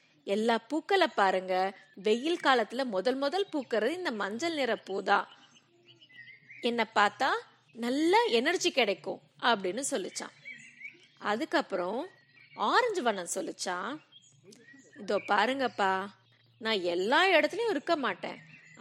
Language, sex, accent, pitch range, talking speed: Tamil, female, native, 190-290 Hz, 95 wpm